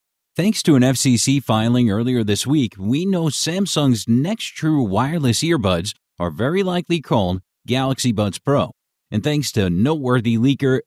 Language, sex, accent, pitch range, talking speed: English, male, American, 100-140 Hz, 150 wpm